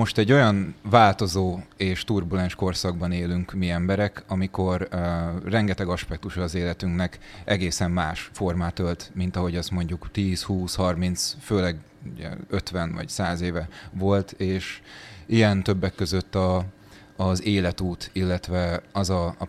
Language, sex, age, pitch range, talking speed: Hungarian, male, 30-49, 85-100 Hz, 140 wpm